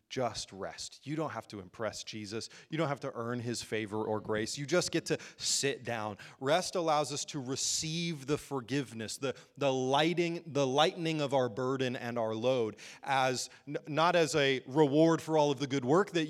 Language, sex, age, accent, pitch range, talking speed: English, male, 30-49, American, 120-155 Hz, 195 wpm